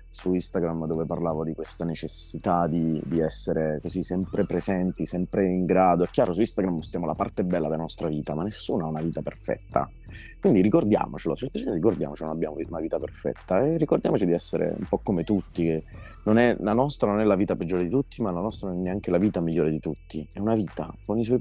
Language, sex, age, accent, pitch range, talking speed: Italian, male, 30-49, native, 80-100 Hz, 220 wpm